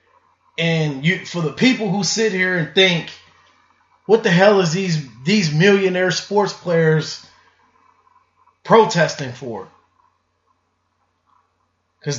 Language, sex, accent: English, male, American